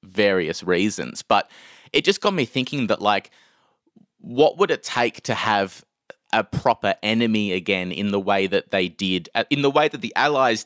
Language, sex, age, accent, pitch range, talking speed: English, male, 20-39, Australian, 95-120 Hz, 180 wpm